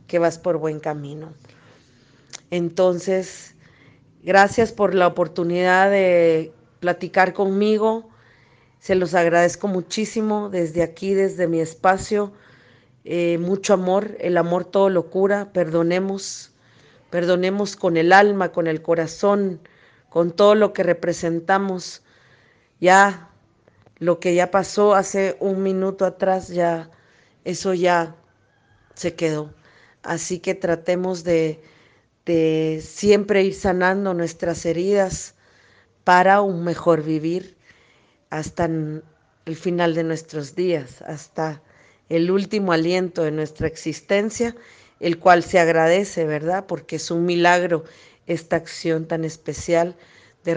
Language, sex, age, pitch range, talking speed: Spanish, female, 40-59, 160-185 Hz, 115 wpm